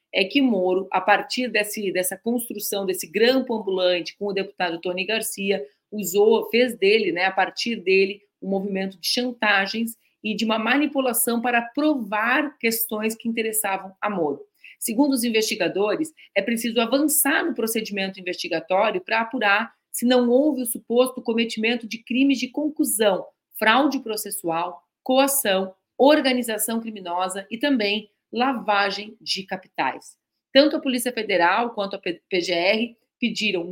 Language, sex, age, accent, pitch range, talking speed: Portuguese, female, 40-59, Brazilian, 190-250 Hz, 135 wpm